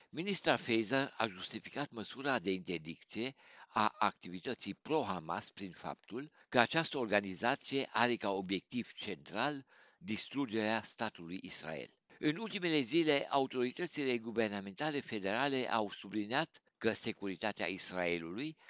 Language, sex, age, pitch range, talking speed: Romanian, male, 60-79, 95-135 Hz, 105 wpm